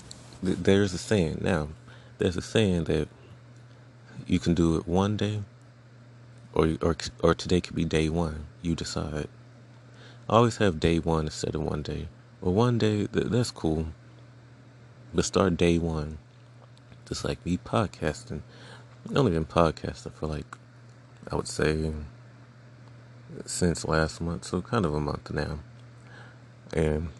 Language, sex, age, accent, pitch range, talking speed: English, male, 30-49, American, 85-120 Hz, 145 wpm